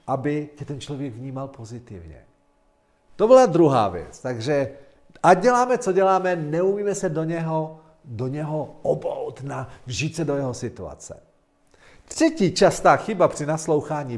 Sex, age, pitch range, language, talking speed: male, 50-69, 115-190 Hz, Czech, 135 wpm